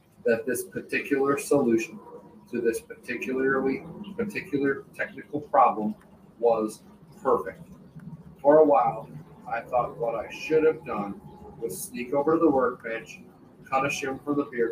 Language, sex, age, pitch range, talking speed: English, male, 40-59, 110-140 Hz, 135 wpm